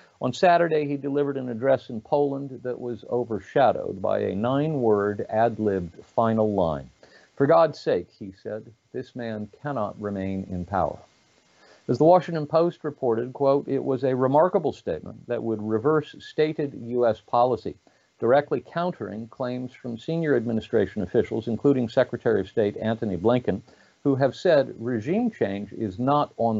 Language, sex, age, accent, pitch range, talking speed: English, male, 50-69, American, 110-145 Hz, 150 wpm